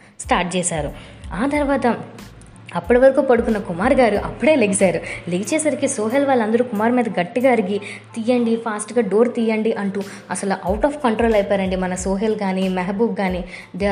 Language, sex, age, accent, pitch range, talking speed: Telugu, female, 20-39, native, 200-245 Hz, 145 wpm